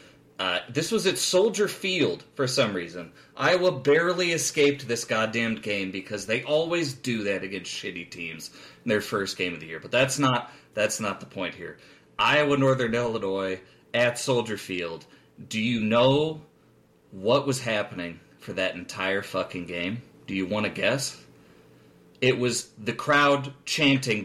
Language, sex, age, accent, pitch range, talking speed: English, male, 30-49, American, 100-140 Hz, 160 wpm